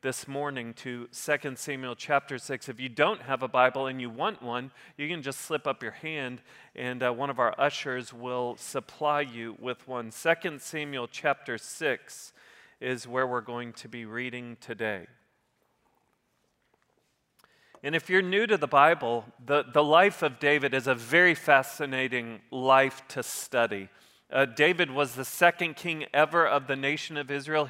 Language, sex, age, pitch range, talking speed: English, male, 40-59, 130-165 Hz, 170 wpm